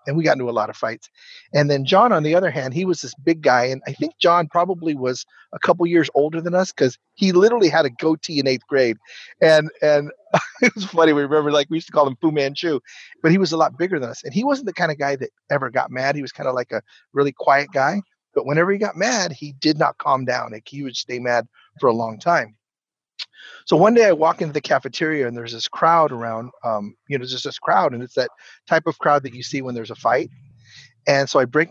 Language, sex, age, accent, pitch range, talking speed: English, male, 40-59, American, 135-170 Hz, 265 wpm